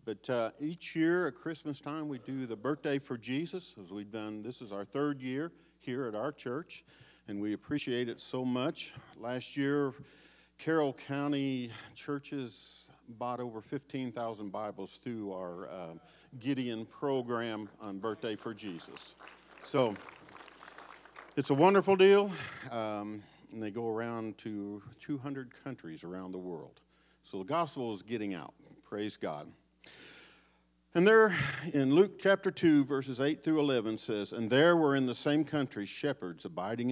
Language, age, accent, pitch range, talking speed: English, 50-69, American, 105-140 Hz, 155 wpm